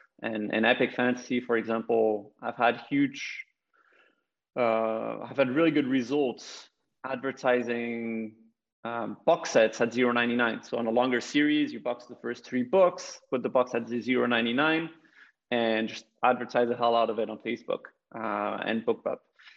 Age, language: 30-49, English